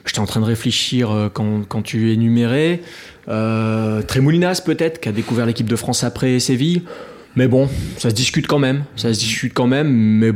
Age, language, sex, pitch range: 20-39, French, male, 110-130 Hz